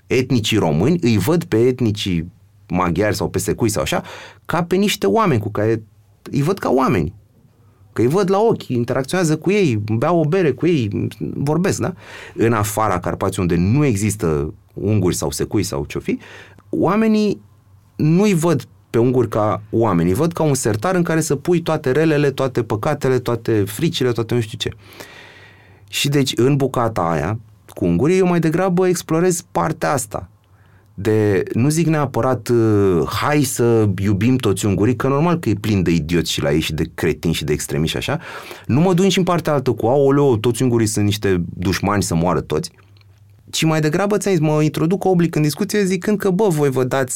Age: 30-49